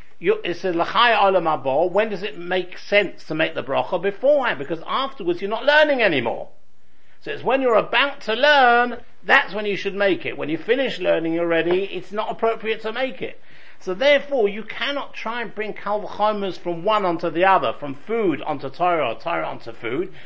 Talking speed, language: 185 wpm, English